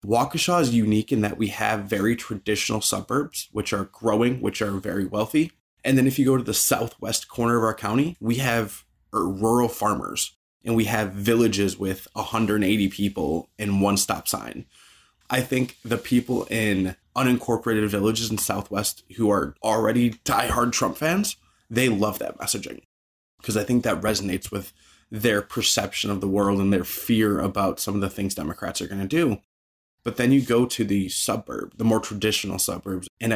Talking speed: 180 wpm